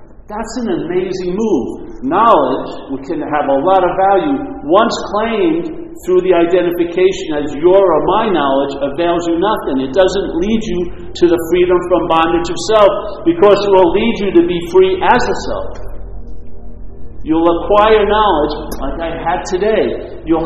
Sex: male